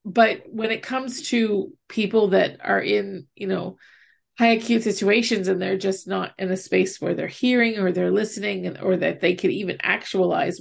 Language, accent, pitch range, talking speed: English, American, 190-225 Hz, 190 wpm